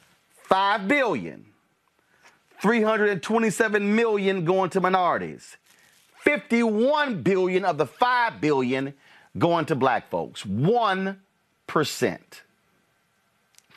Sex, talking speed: male, 80 wpm